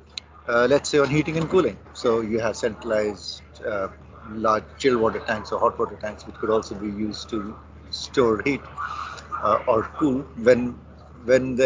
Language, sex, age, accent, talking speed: English, male, 50-69, Indian, 175 wpm